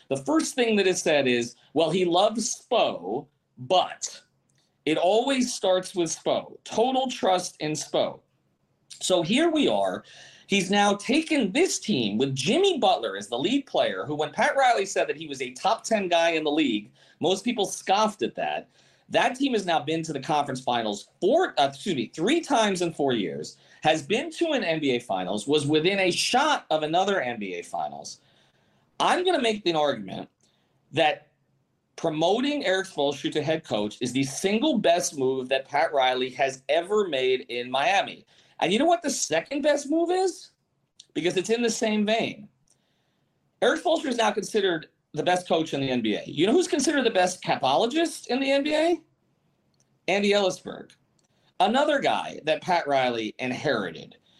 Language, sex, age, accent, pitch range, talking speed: English, male, 40-59, American, 155-250 Hz, 175 wpm